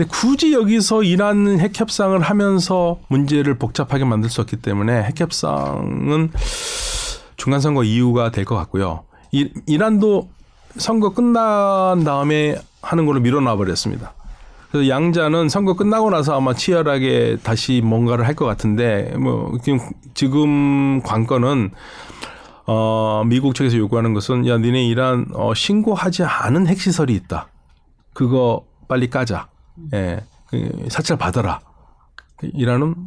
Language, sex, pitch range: Korean, male, 110-165 Hz